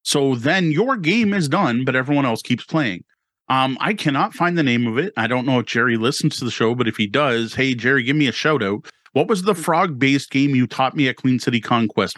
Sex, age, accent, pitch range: male, 30-49, American, 120-155 Hz